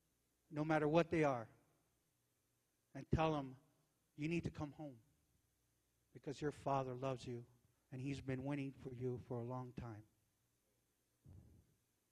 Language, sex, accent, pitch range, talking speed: English, male, American, 125-170 Hz, 140 wpm